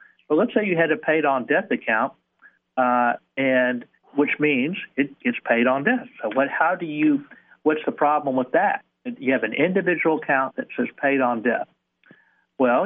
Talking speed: 175 wpm